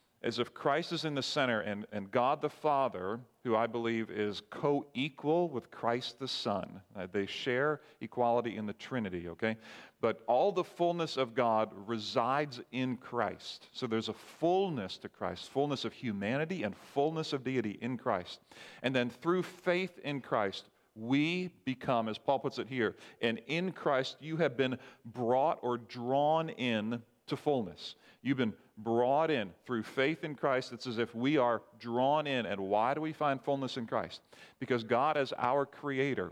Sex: male